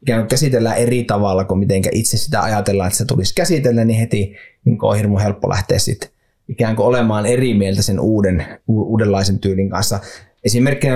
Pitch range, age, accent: 100-120 Hz, 20-39, native